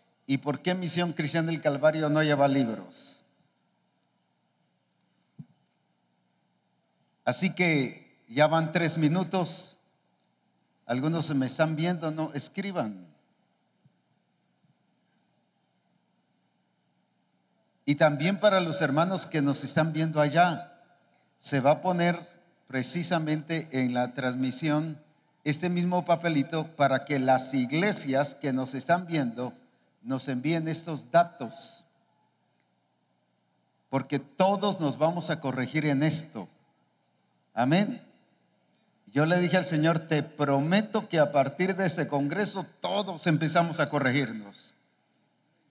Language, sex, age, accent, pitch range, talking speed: English, male, 50-69, Mexican, 140-175 Hz, 105 wpm